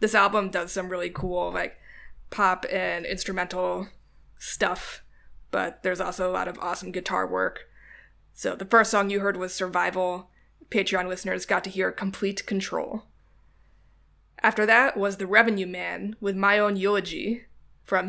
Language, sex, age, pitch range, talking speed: English, female, 20-39, 185-220 Hz, 155 wpm